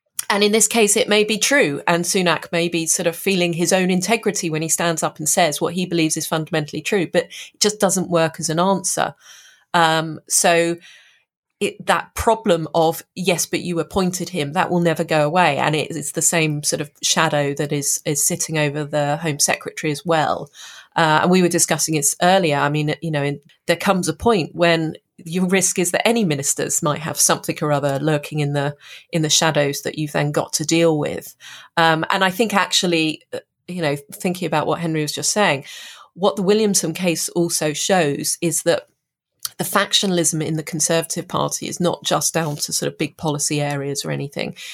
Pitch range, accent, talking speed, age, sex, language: 150-175 Hz, British, 205 wpm, 30-49, female, English